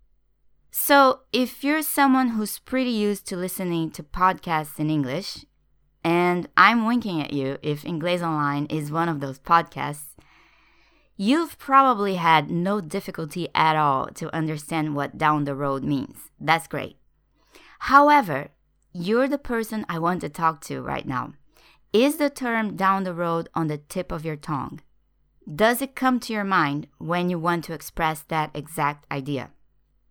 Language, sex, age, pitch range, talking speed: English, female, 20-39, 150-200 Hz, 155 wpm